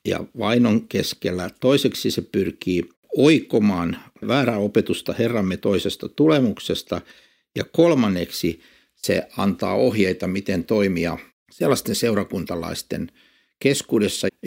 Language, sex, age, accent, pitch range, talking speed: Finnish, male, 60-79, native, 90-120 Hz, 90 wpm